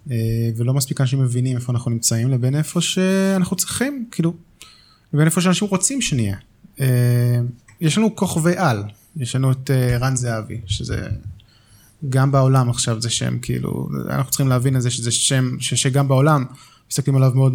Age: 20-39